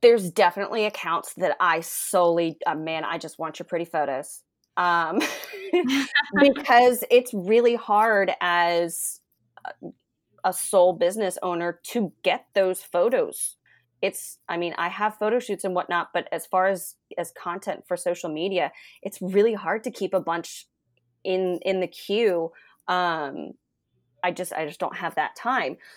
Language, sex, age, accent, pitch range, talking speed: English, female, 30-49, American, 165-190 Hz, 155 wpm